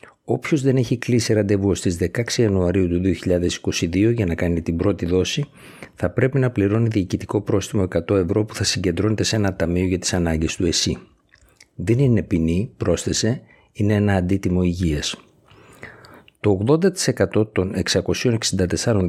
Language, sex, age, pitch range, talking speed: Greek, male, 50-69, 90-115 Hz, 150 wpm